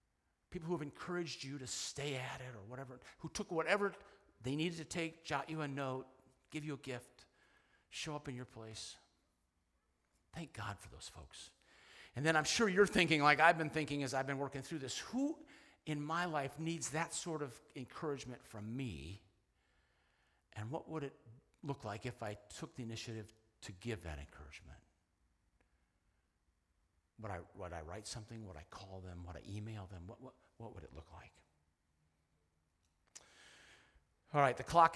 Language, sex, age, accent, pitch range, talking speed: English, male, 50-69, American, 95-155 Hz, 175 wpm